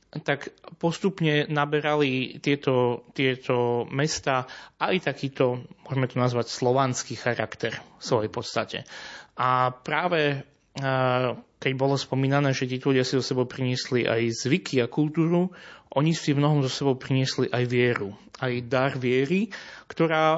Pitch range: 120-140 Hz